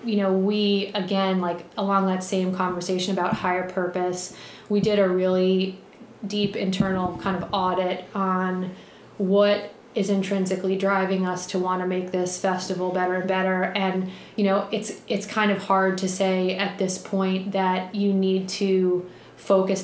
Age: 30-49